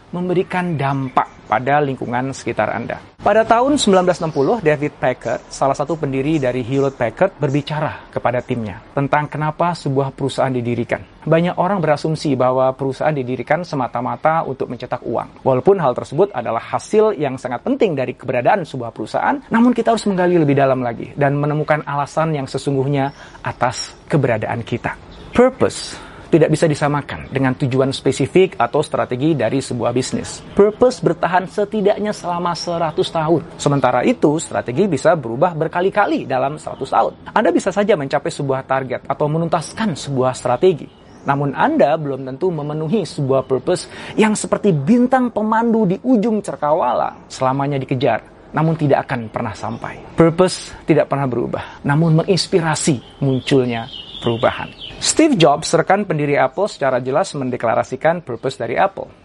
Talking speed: 140 wpm